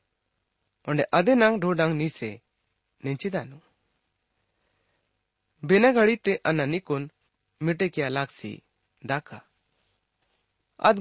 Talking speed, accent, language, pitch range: 80 wpm, Indian, English, 125-195 Hz